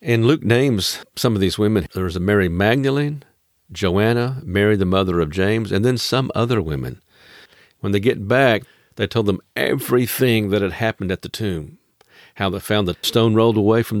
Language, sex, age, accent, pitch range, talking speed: English, male, 50-69, American, 90-120 Hz, 195 wpm